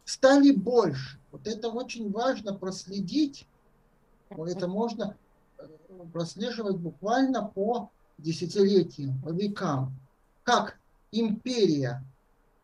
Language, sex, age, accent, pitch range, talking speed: Russian, male, 60-79, native, 165-260 Hz, 80 wpm